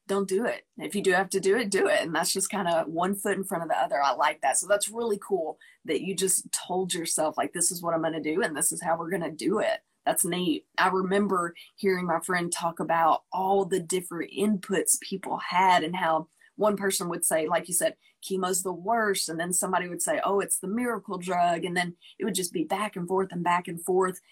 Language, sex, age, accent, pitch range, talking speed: English, female, 20-39, American, 175-210 Hz, 255 wpm